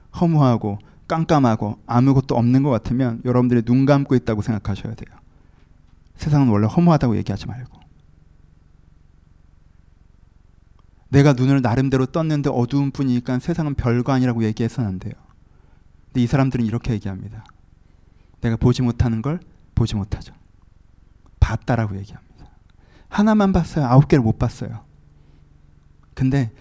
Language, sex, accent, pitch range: Korean, male, native, 90-130 Hz